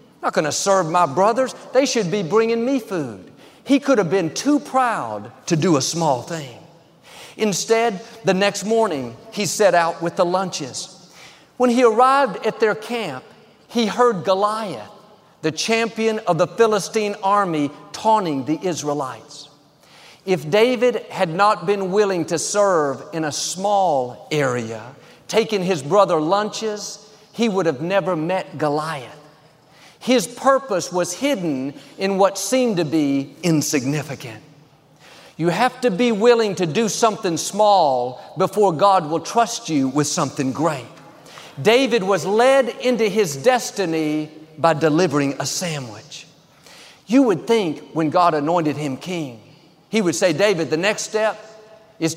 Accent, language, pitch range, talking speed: American, English, 155-215 Hz, 145 wpm